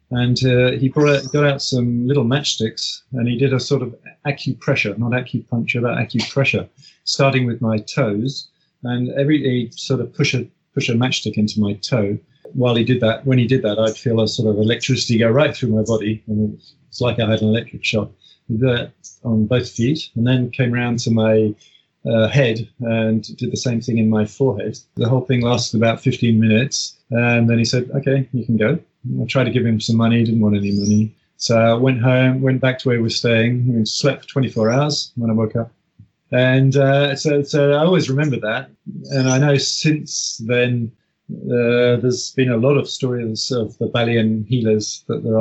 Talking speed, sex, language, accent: 205 wpm, male, English, British